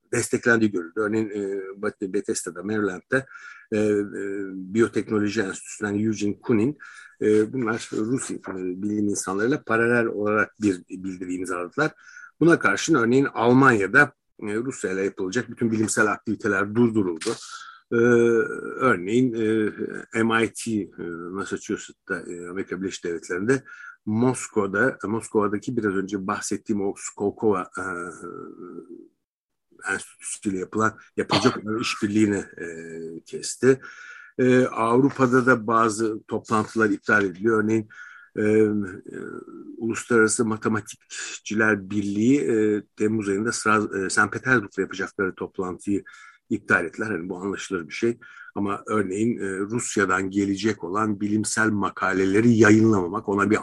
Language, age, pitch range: Turkish, 60-79, 100-115 Hz